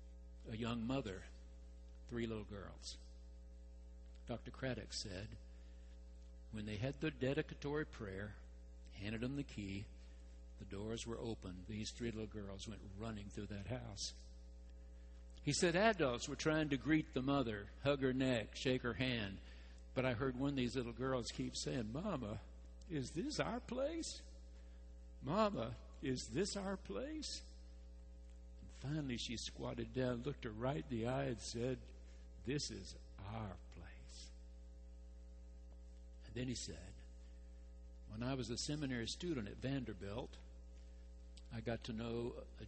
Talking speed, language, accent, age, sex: 140 wpm, English, American, 60-79, male